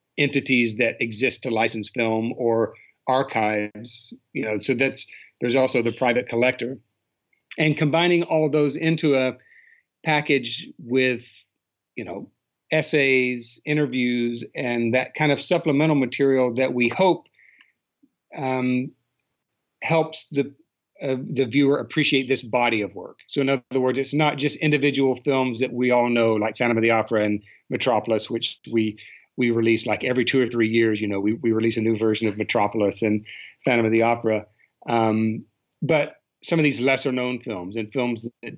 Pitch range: 110-135 Hz